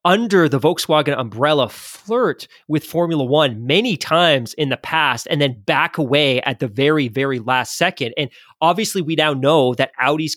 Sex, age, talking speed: male, 20-39, 175 wpm